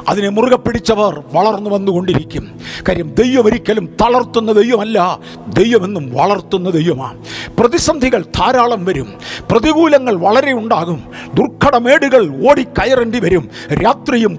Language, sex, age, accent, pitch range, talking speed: Malayalam, male, 50-69, native, 195-260 Hz, 95 wpm